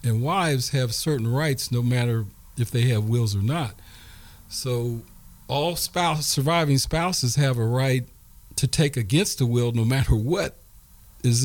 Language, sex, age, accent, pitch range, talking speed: English, male, 40-59, American, 125-150 Hz, 155 wpm